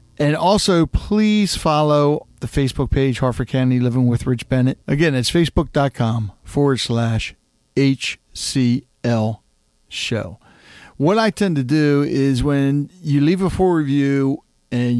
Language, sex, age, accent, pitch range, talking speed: English, male, 50-69, American, 120-150 Hz, 130 wpm